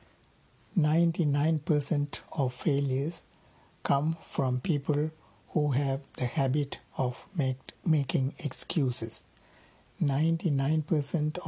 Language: Tamil